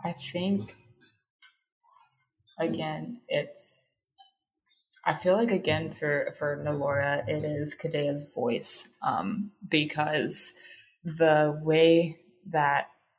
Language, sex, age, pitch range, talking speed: English, female, 20-39, 145-185 Hz, 90 wpm